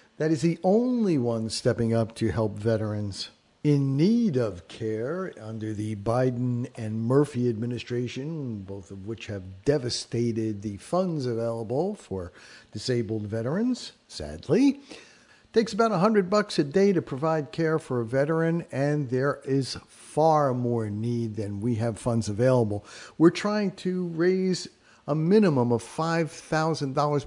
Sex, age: male, 50-69